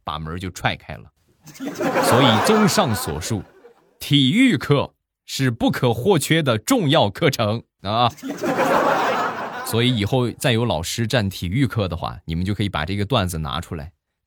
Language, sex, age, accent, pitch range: Chinese, male, 20-39, native, 90-125 Hz